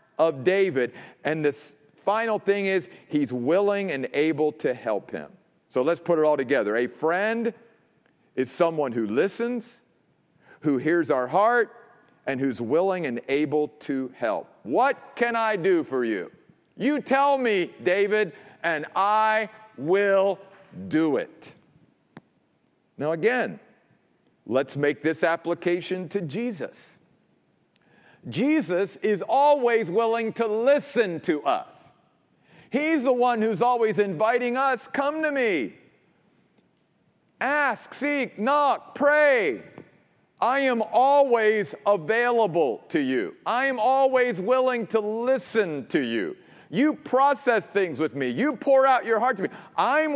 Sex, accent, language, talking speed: male, American, English, 130 wpm